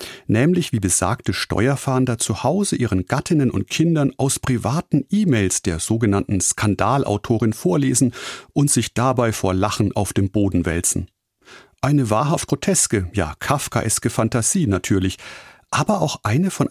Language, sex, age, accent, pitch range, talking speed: German, male, 40-59, German, 100-140 Hz, 135 wpm